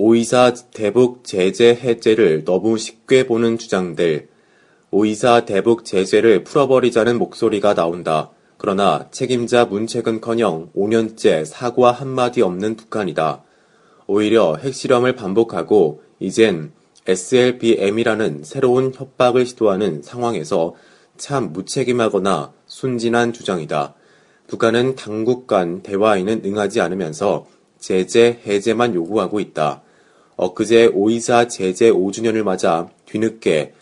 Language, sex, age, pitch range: Korean, male, 30-49, 105-120 Hz